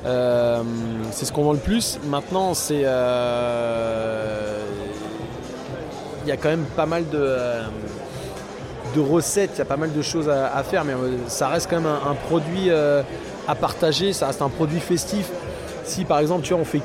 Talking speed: 195 wpm